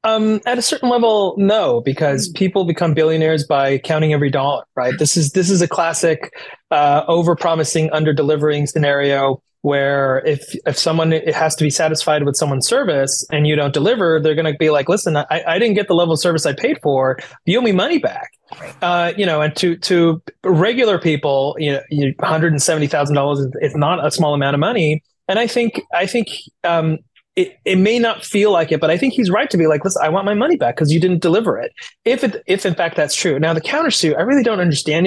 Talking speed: 215 wpm